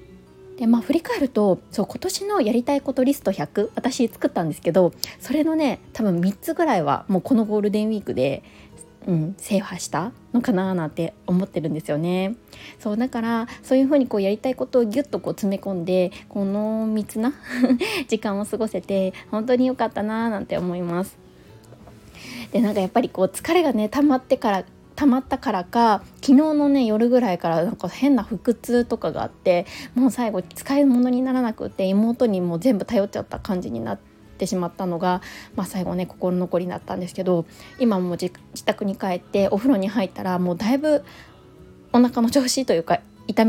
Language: Japanese